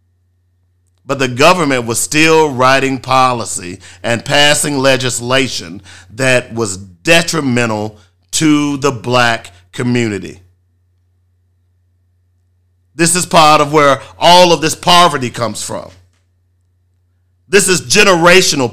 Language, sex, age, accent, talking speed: English, male, 50-69, American, 100 wpm